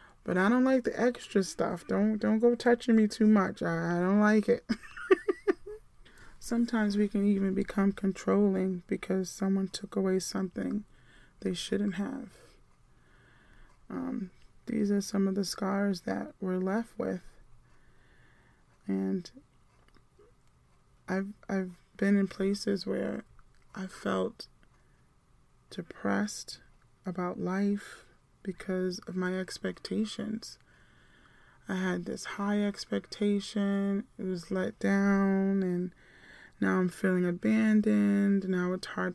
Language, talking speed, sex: English, 120 wpm, male